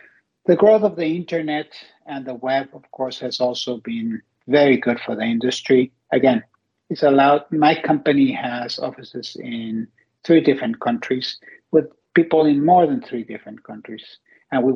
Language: English